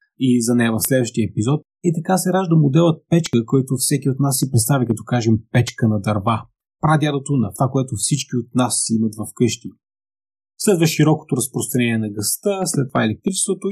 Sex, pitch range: male, 110-140 Hz